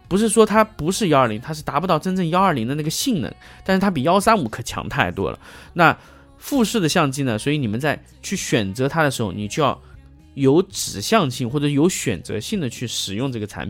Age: 20-39